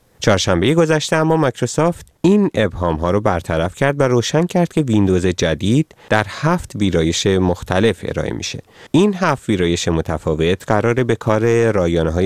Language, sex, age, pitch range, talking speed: Persian, male, 30-49, 85-130 Hz, 145 wpm